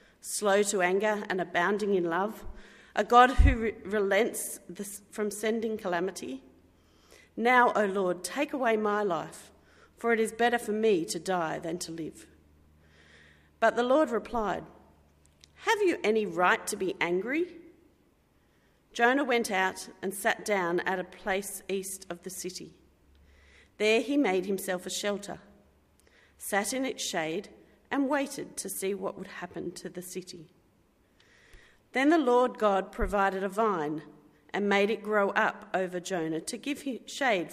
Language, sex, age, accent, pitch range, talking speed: English, female, 40-59, Australian, 175-225 Hz, 155 wpm